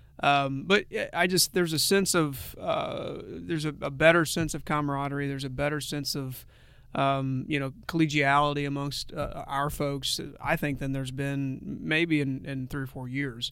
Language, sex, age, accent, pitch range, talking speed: English, male, 30-49, American, 135-150 Hz, 180 wpm